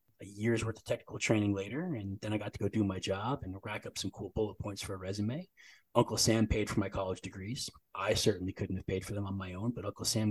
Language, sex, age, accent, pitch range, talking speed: English, male, 30-49, American, 100-120 Hz, 270 wpm